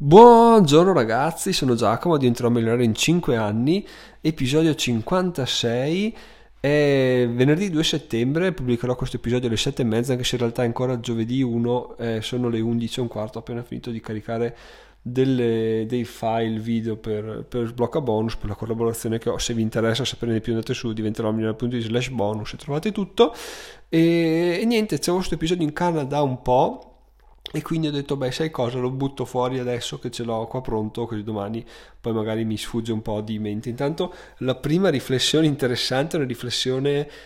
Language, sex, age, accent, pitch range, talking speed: Italian, male, 20-39, native, 115-150 Hz, 190 wpm